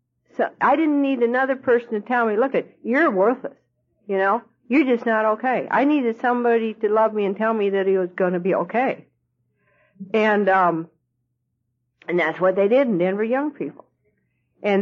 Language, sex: English, female